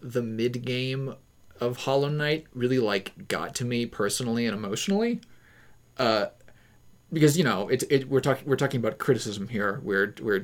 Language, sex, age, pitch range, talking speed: English, male, 30-49, 115-145 Hz, 160 wpm